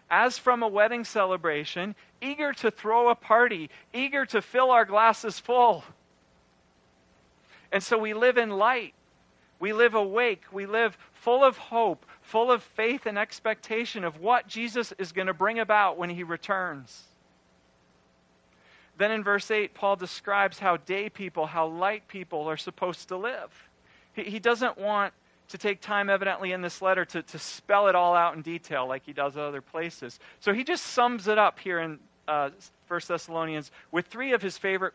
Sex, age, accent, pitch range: male, 40-59, American, 130-210 Hz